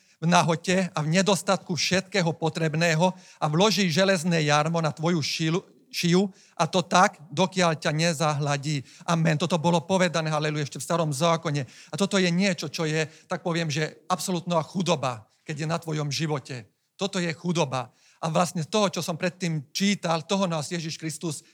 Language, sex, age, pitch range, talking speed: Slovak, male, 40-59, 160-195 Hz, 165 wpm